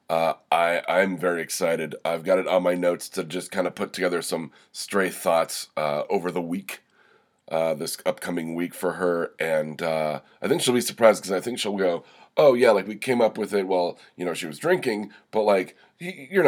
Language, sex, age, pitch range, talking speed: English, male, 30-49, 85-105 Hz, 220 wpm